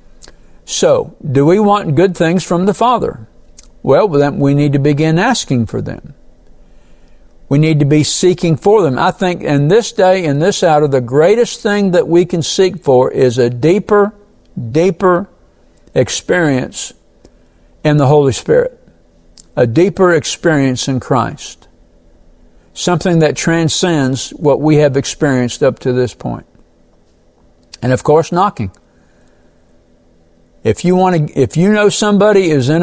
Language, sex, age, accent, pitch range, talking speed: English, male, 60-79, American, 115-180 Hz, 150 wpm